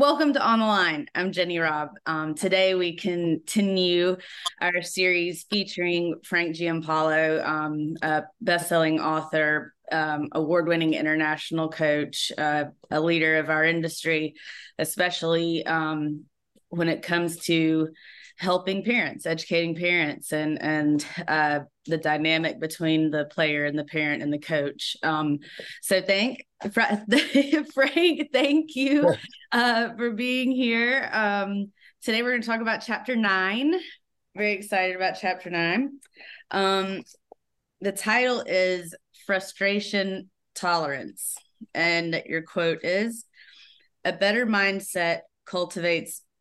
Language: English